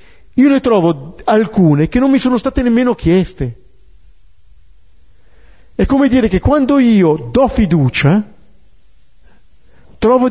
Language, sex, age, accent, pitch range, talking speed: Italian, male, 50-69, native, 125-205 Hz, 115 wpm